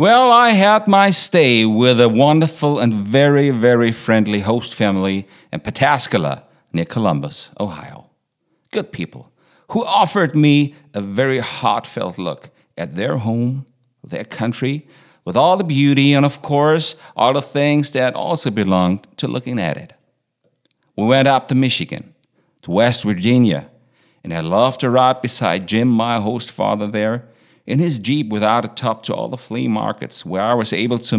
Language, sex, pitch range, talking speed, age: English, male, 110-150 Hz, 165 wpm, 50-69